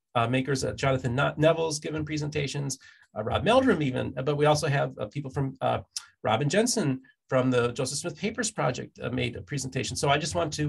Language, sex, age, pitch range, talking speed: English, male, 40-59, 130-155 Hz, 210 wpm